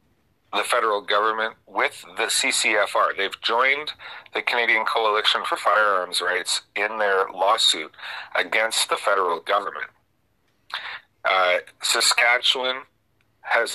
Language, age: English, 40-59